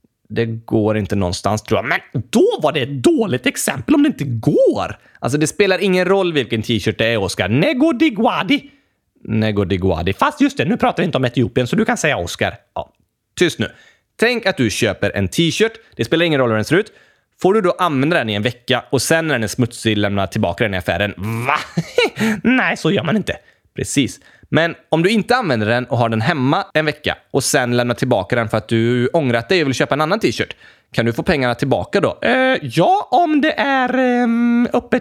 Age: 20-39